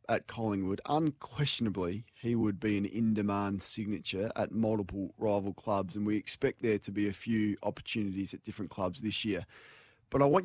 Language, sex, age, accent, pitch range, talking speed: English, male, 20-39, Australian, 105-135 Hz, 170 wpm